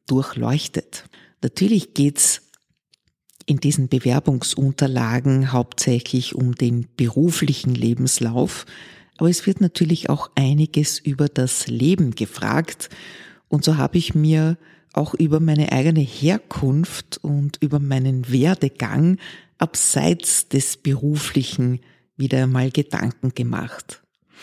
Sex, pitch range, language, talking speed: female, 130-155 Hz, German, 105 wpm